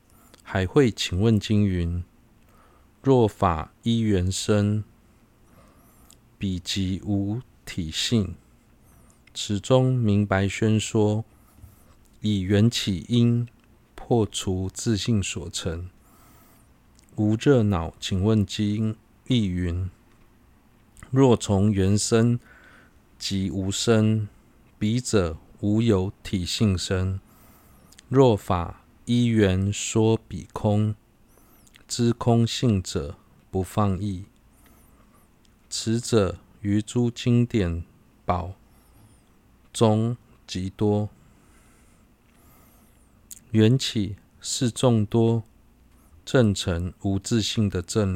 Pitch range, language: 95-115 Hz, Chinese